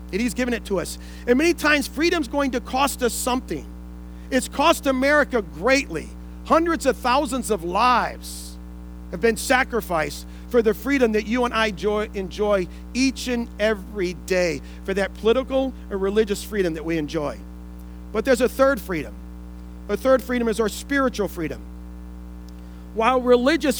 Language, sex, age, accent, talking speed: English, male, 40-59, American, 155 wpm